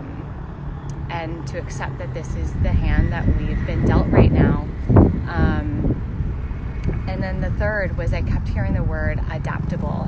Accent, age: American, 20-39